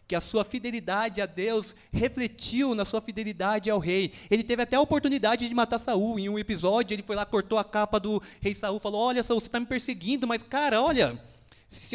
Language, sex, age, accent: Portuguese, male, 20-39, Brazilian